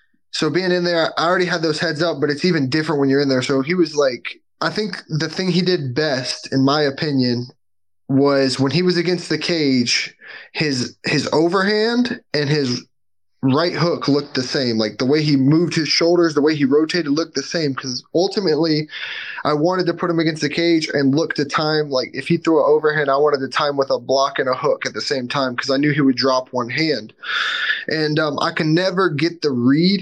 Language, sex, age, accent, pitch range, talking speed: English, male, 10-29, American, 135-170 Hz, 230 wpm